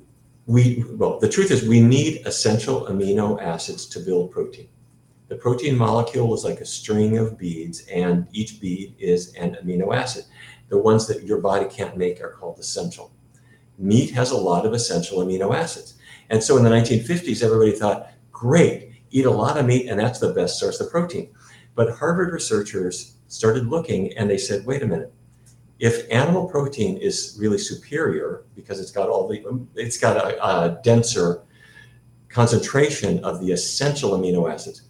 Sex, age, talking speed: male, 50-69, 170 wpm